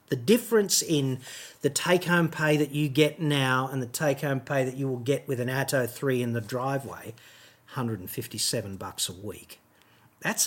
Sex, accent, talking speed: male, Australian, 170 wpm